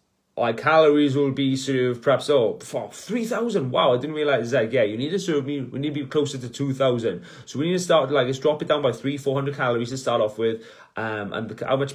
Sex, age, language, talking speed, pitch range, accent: male, 30-49, English, 245 wpm, 120-145 Hz, British